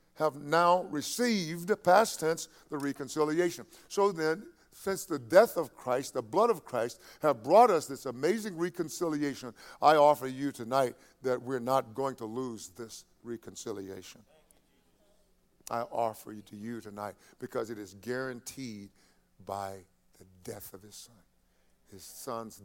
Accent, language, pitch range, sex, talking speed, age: American, English, 105-135 Hz, male, 145 wpm, 50-69